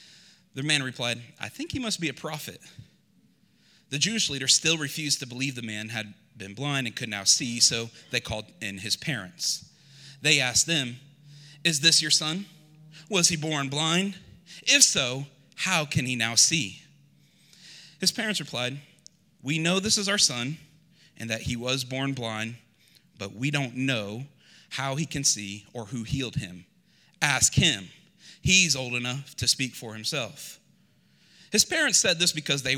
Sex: male